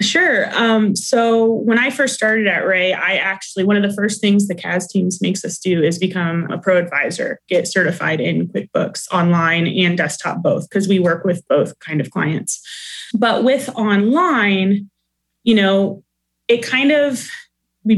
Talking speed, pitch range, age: 175 wpm, 185-220 Hz, 20-39